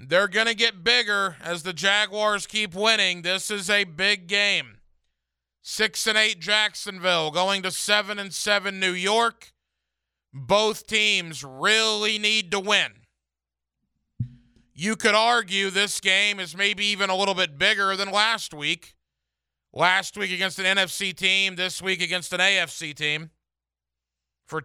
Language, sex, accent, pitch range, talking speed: English, male, American, 145-200 Hz, 150 wpm